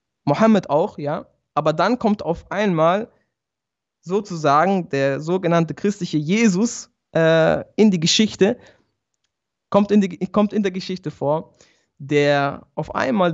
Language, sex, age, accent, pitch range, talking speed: German, male, 20-39, German, 150-190 Hz, 125 wpm